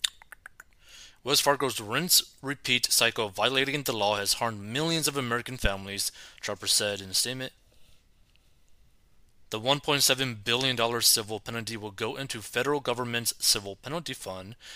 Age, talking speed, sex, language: 30-49, 135 wpm, male, English